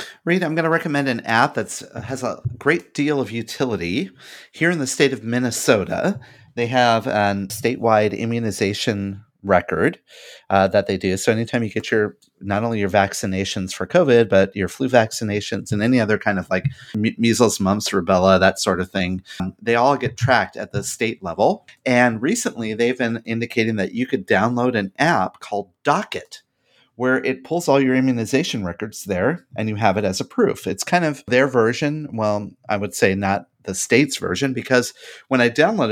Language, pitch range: English, 100-130 Hz